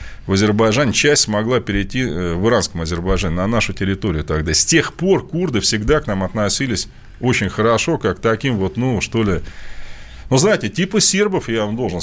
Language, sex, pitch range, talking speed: Russian, male, 105-155 Hz, 175 wpm